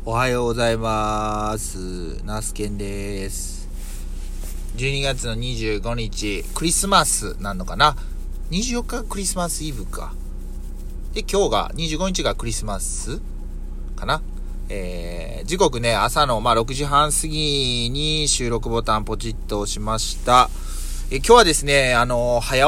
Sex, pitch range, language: male, 100-140 Hz, Japanese